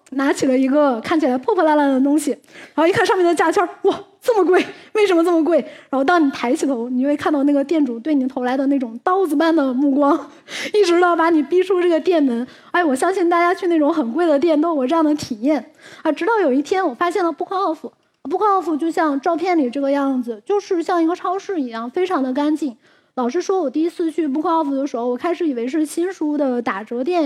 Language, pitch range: Chinese, 270-340 Hz